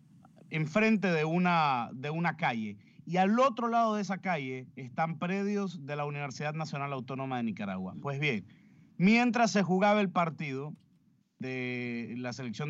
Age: 30-49